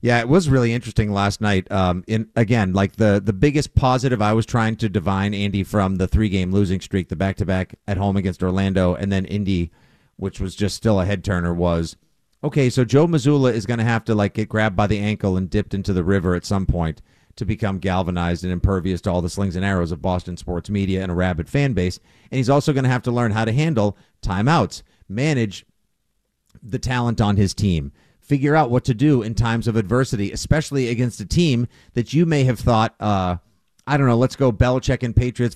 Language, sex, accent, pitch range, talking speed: English, male, American, 95-125 Hz, 220 wpm